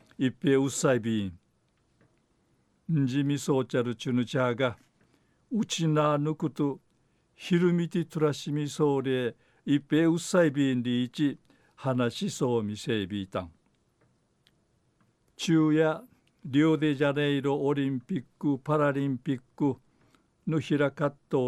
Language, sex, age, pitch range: Japanese, male, 60-79, 130-150 Hz